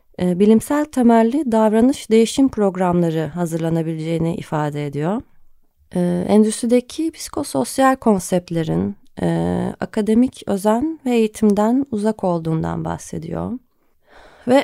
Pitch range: 180-235 Hz